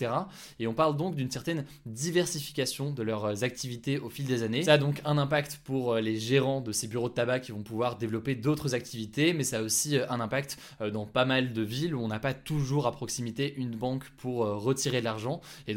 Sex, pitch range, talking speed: male, 115-145 Hz, 220 wpm